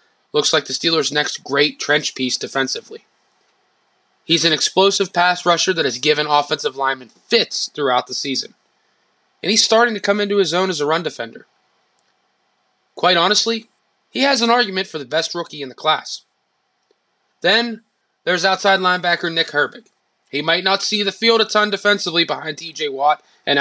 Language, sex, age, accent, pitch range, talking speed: English, male, 20-39, American, 150-205 Hz, 170 wpm